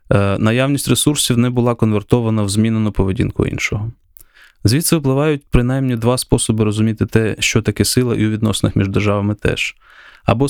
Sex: male